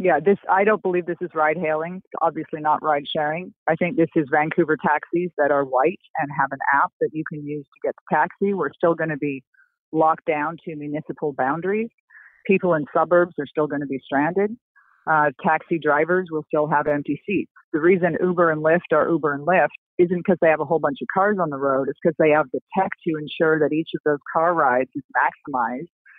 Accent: American